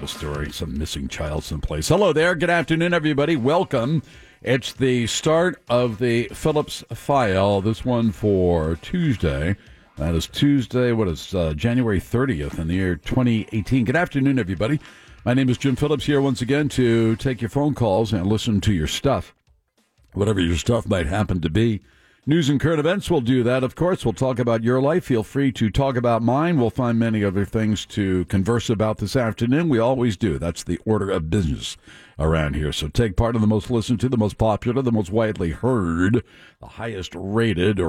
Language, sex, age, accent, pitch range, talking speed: English, male, 60-79, American, 95-135 Hz, 190 wpm